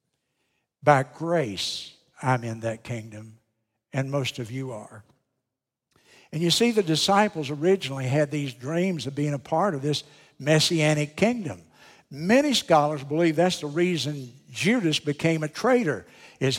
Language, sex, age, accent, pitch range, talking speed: English, male, 60-79, American, 140-185 Hz, 140 wpm